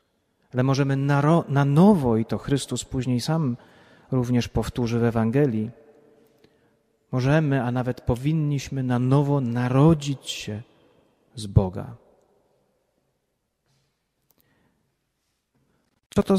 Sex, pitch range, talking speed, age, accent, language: male, 120-155 Hz, 95 wpm, 40-59, native, Polish